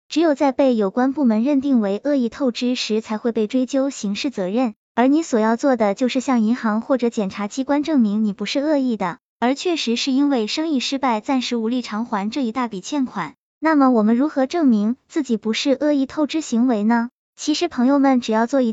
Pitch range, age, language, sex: 220-285 Hz, 20-39, Chinese, male